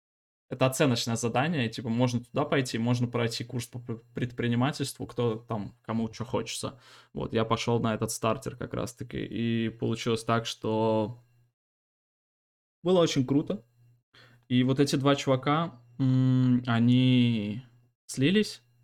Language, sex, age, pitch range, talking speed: Russian, male, 20-39, 115-130 Hz, 125 wpm